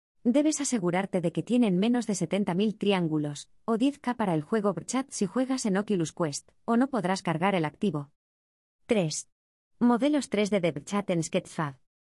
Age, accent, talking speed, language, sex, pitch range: 20-39, Spanish, 160 wpm, Spanish, female, 160-215 Hz